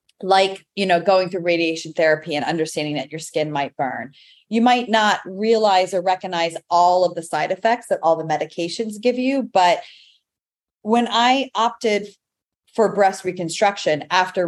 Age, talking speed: 30-49, 160 wpm